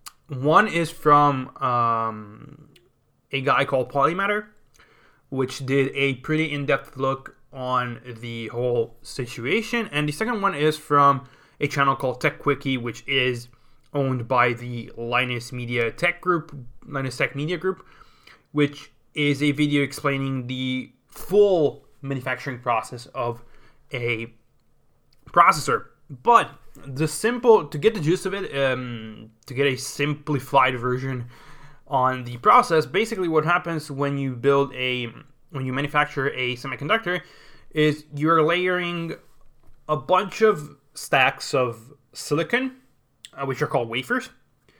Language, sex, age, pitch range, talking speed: English, male, 20-39, 125-155 Hz, 135 wpm